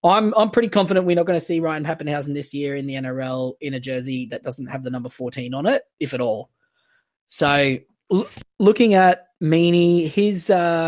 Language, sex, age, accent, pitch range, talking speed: English, male, 20-39, Australian, 140-180 Hz, 200 wpm